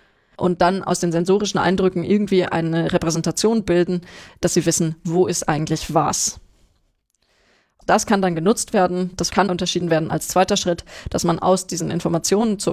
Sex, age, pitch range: female, 20-39, 165-190 Hz